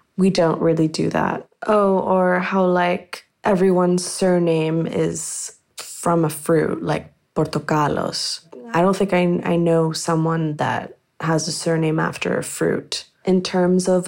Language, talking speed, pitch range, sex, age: English, 145 wpm, 155-180 Hz, female, 20-39